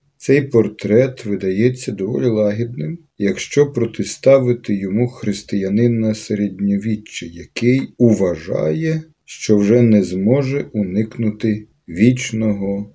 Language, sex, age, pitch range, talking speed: Ukrainian, male, 50-69, 95-125 Hz, 85 wpm